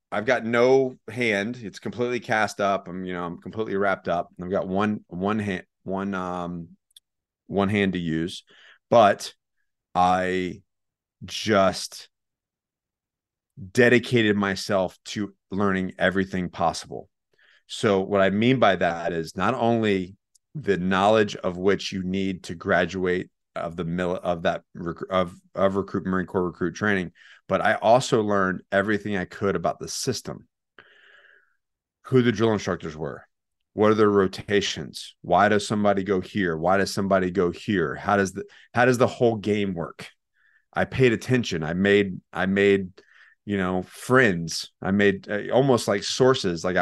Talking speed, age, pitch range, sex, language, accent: 155 wpm, 30-49, 95-105 Hz, male, English, American